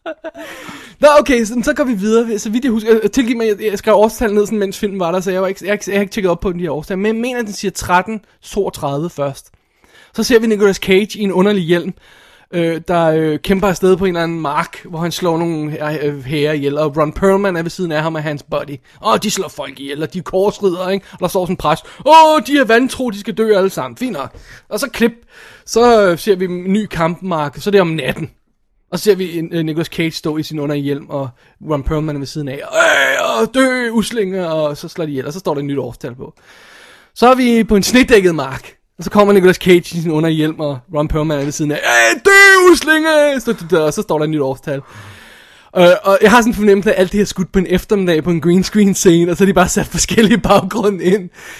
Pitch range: 160-220 Hz